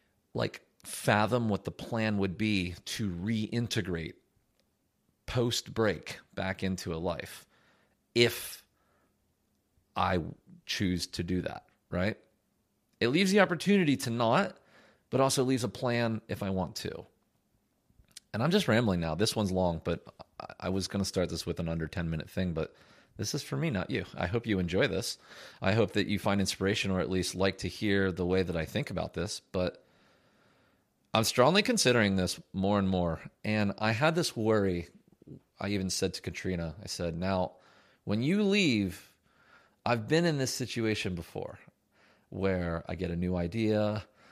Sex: male